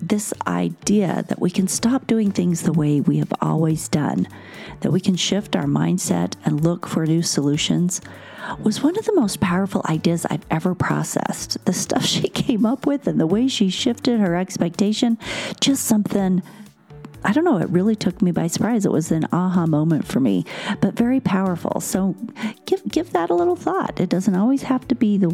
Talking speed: 195 wpm